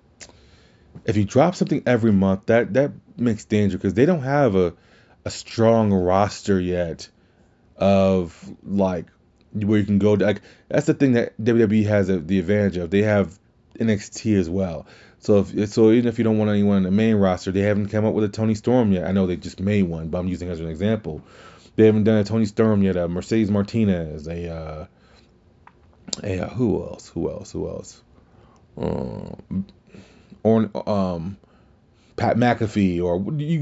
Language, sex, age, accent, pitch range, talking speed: English, male, 30-49, American, 90-110 Hz, 185 wpm